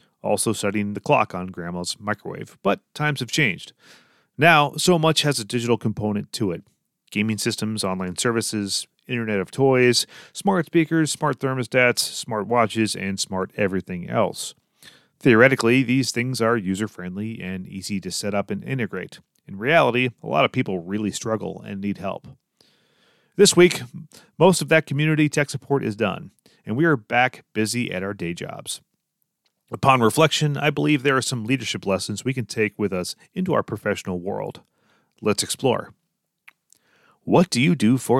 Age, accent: 30-49, American